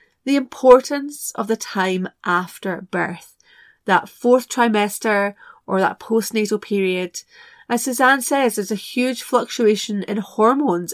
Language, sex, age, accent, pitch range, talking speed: English, female, 30-49, British, 185-245 Hz, 125 wpm